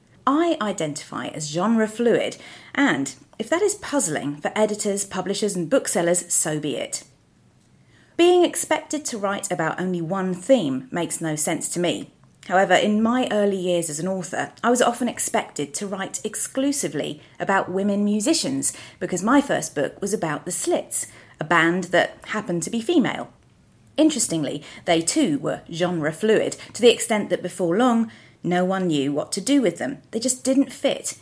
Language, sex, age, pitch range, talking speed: English, female, 40-59, 170-255 Hz, 165 wpm